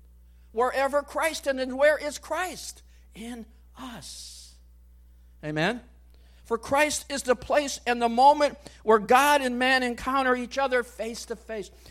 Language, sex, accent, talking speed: English, male, American, 140 wpm